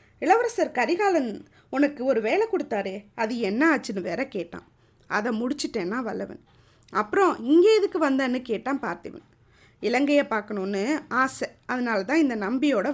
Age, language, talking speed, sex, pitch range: 20-39, Tamil, 125 wpm, female, 215-315 Hz